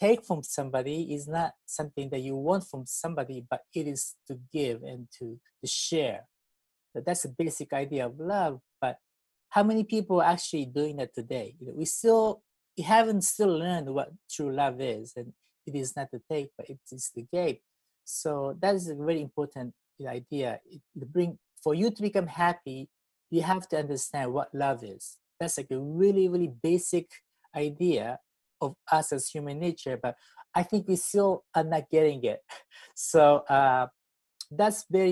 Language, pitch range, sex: English, 135-185 Hz, male